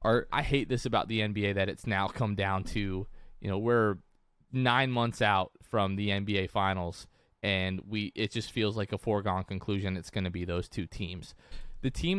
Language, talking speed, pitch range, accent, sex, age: English, 195 wpm, 95-120 Hz, American, male, 20-39